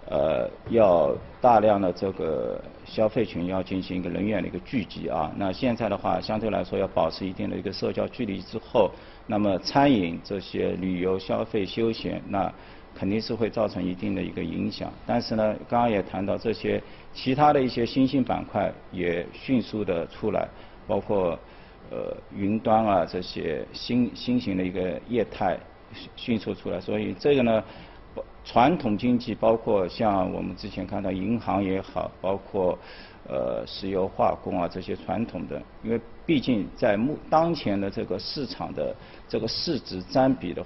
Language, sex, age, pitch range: Chinese, male, 50-69, 95-115 Hz